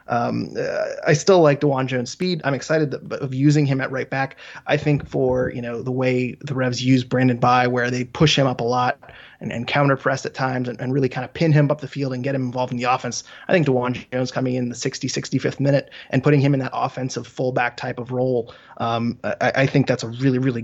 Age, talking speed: 20-39, 255 wpm